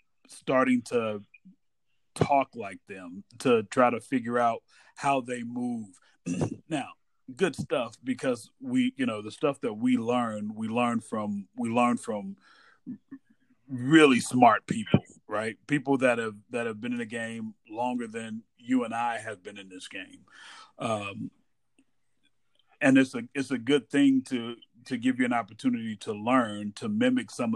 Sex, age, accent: male, 40-59, American